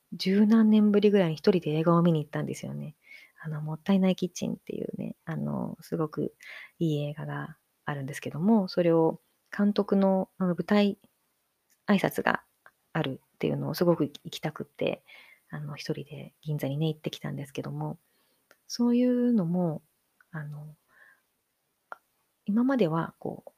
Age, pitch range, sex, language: 30-49, 155-220 Hz, female, Japanese